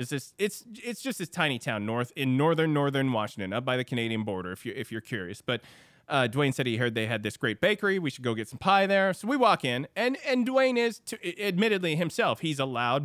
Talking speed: 235 wpm